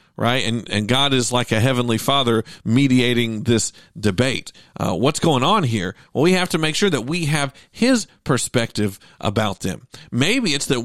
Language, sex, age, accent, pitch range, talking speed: English, male, 50-69, American, 115-150 Hz, 185 wpm